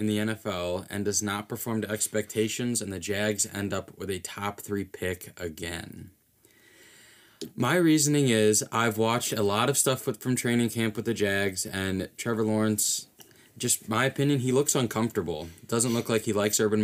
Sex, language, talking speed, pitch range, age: male, English, 185 wpm, 95-115 Hz, 20-39